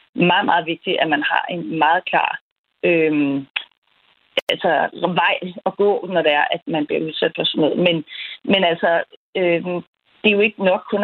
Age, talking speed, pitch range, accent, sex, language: 40-59, 180 wpm, 175-220 Hz, native, female, Danish